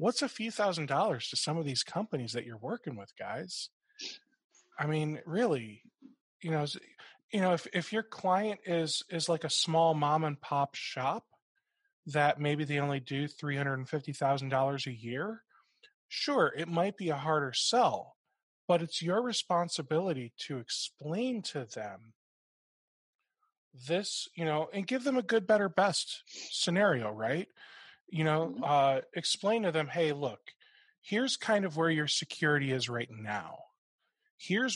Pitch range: 135-190 Hz